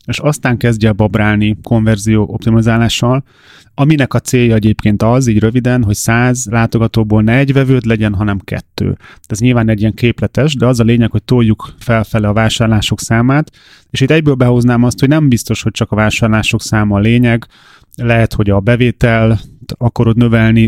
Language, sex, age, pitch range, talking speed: Hungarian, male, 30-49, 110-125 Hz, 170 wpm